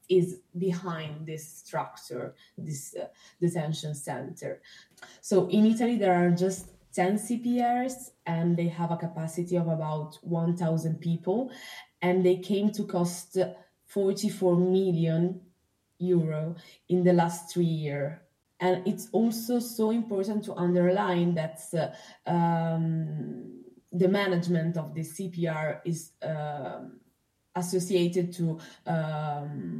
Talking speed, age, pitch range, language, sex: 115 wpm, 20-39, 160-180 Hz, Italian, female